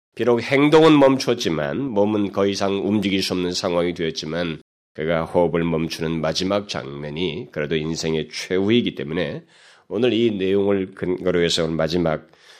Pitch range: 80-95 Hz